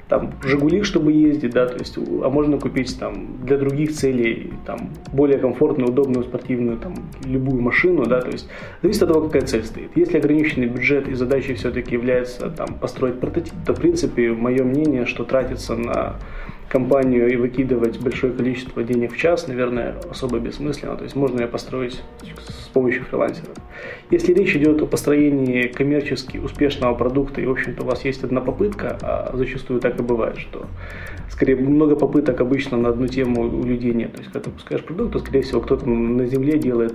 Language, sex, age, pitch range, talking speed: Ukrainian, male, 20-39, 120-145 Hz, 185 wpm